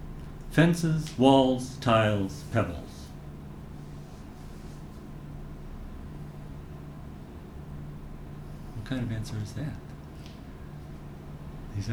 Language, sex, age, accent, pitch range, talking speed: English, male, 60-79, American, 75-115 Hz, 55 wpm